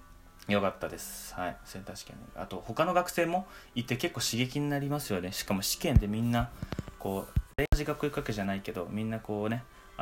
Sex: male